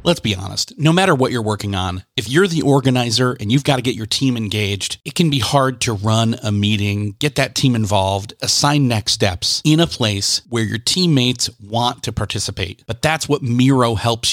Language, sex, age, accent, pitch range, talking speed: English, male, 30-49, American, 110-150 Hz, 210 wpm